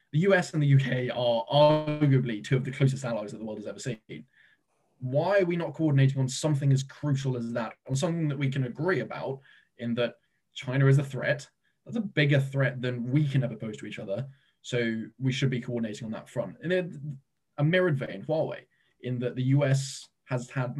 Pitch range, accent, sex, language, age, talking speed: 120-145 Hz, British, male, English, 20-39, 215 wpm